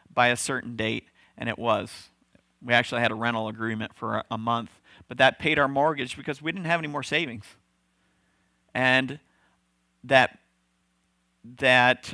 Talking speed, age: 160 wpm, 50-69